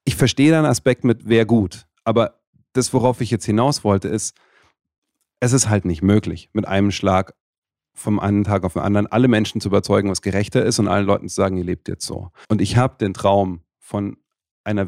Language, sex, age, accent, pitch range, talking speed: German, male, 40-59, German, 100-120 Hz, 210 wpm